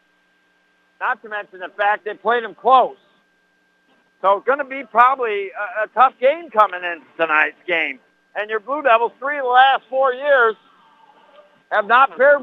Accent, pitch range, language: American, 190-250 Hz, English